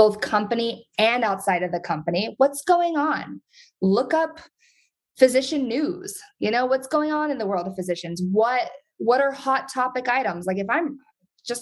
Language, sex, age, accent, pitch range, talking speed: English, female, 20-39, American, 195-310 Hz, 175 wpm